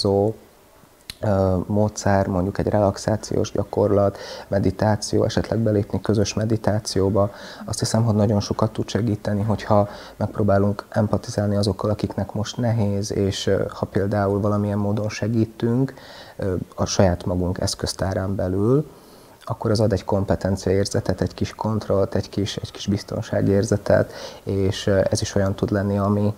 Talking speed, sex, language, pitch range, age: 125 wpm, male, Hungarian, 100-110 Hz, 30-49